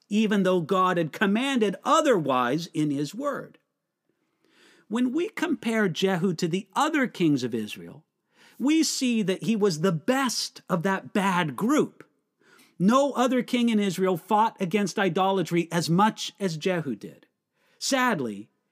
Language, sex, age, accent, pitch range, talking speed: English, male, 50-69, American, 175-235 Hz, 140 wpm